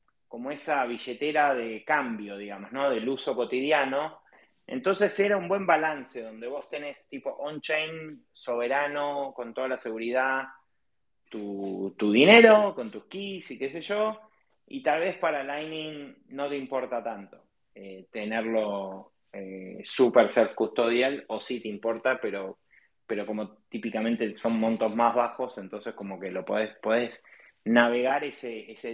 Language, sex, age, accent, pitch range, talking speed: Spanish, male, 30-49, Argentinian, 115-175 Hz, 145 wpm